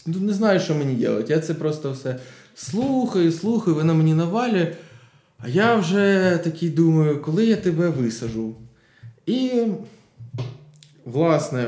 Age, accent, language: 20-39, native, Ukrainian